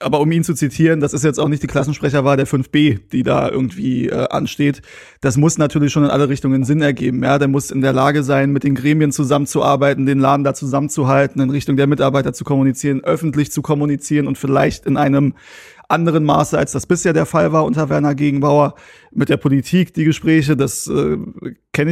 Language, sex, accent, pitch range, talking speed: German, male, German, 140-160 Hz, 205 wpm